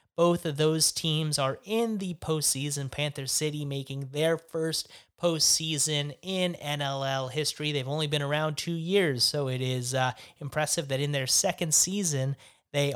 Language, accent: English, American